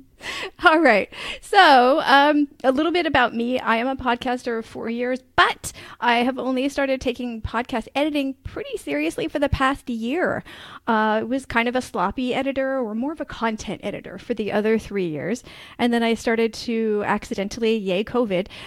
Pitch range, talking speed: 220-285 Hz, 180 wpm